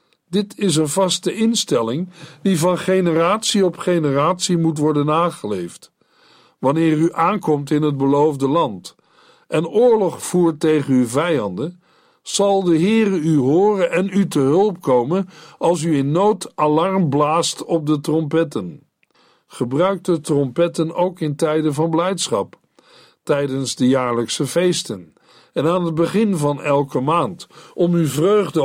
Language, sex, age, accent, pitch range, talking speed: Dutch, male, 60-79, Dutch, 140-180 Hz, 140 wpm